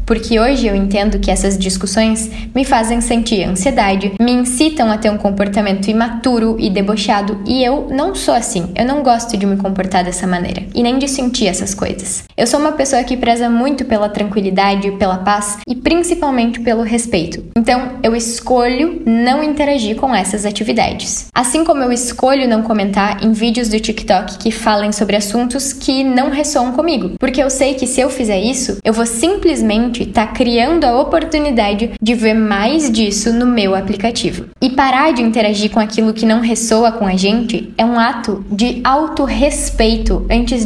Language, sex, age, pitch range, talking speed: Portuguese, female, 10-29, 205-250 Hz, 175 wpm